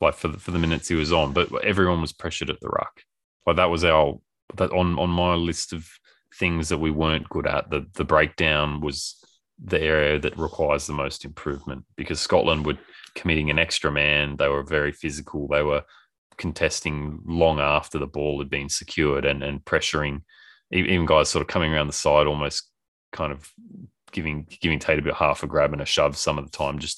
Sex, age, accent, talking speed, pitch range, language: male, 20-39, Australian, 210 wpm, 75-80 Hz, English